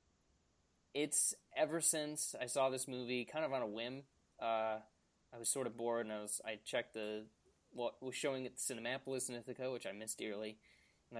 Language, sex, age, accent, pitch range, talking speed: English, male, 20-39, American, 105-125 Hz, 205 wpm